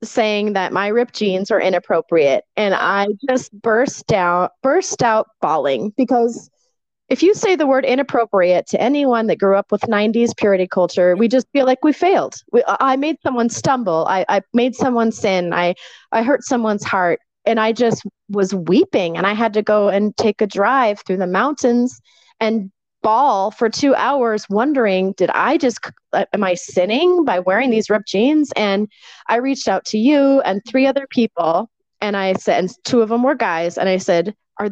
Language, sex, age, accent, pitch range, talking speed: English, female, 30-49, American, 195-270 Hz, 185 wpm